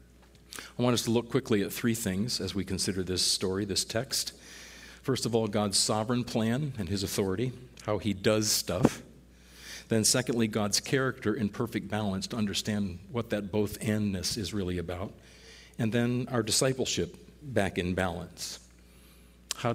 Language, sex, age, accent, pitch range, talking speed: English, male, 50-69, American, 90-115 Hz, 160 wpm